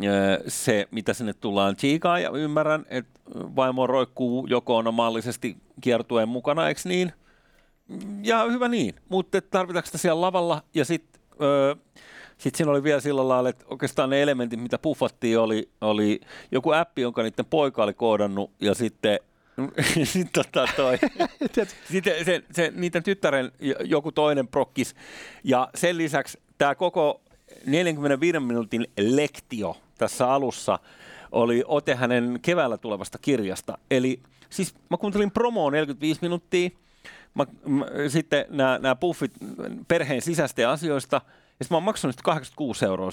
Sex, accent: male, native